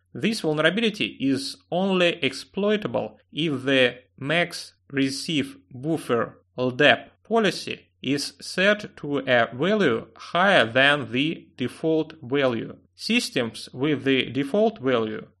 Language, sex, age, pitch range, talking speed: English, male, 30-49, 130-185 Hz, 105 wpm